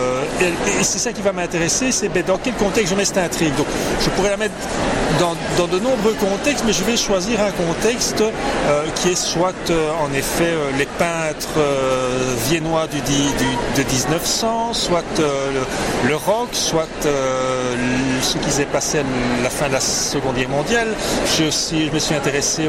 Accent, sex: French, male